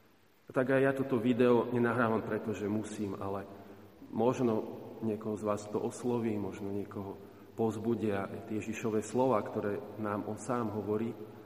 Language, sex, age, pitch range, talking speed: Slovak, male, 40-59, 105-120 Hz, 140 wpm